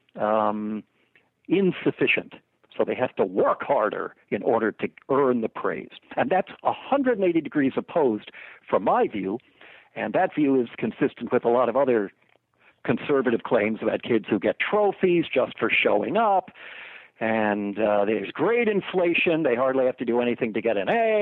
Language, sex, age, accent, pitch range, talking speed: English, male, 60-79, American, 120-190 Hz, 165 wpm